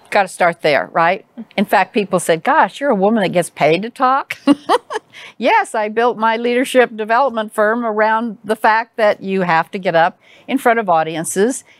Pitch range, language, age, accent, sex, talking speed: 170-225 Hz, English, 50-69, American, female, 195 wpm